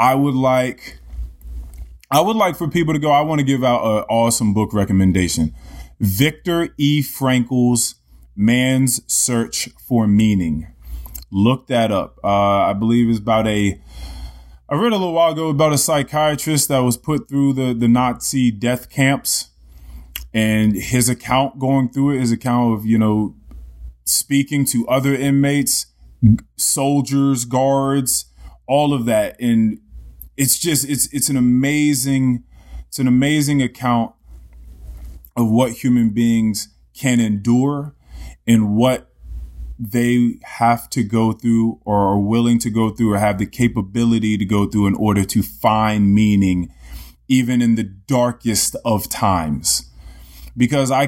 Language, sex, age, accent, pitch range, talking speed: English, male, 20-39, American, 95-130 Hz, 145 wpm